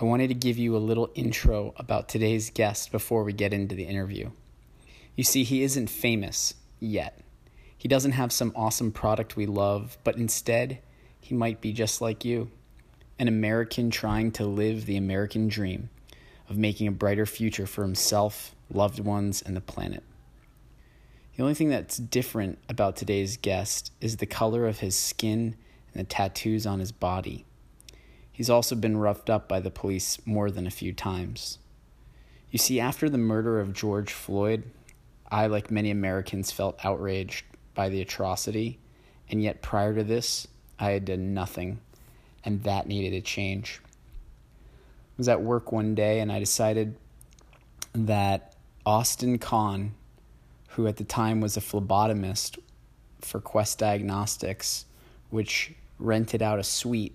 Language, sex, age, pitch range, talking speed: English, male, 20-39, 100-115 Hz, 160 wpm